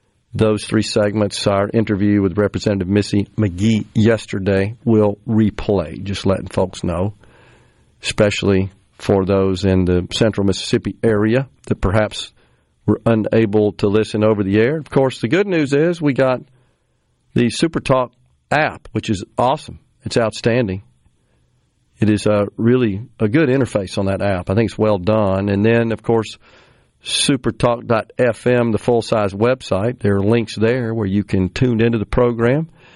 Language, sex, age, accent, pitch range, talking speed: English, male, 50-69, American, 105-125 Hz, 150 wpm